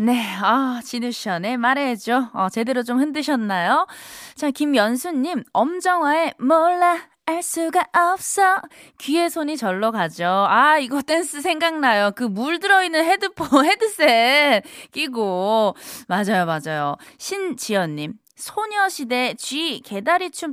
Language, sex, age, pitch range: Korean, female, 20-39, 205-300 Hz